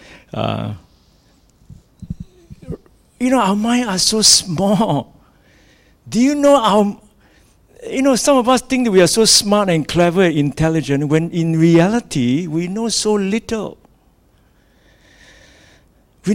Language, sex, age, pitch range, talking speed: English, male, 60-79, 135-195 Hz, 130 wpm